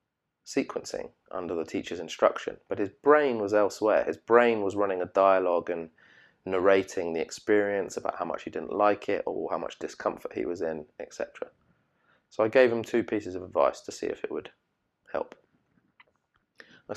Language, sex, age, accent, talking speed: English, male, 20-39, British, 175 wpm